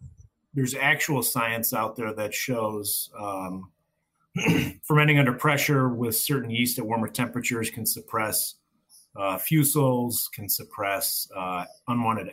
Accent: American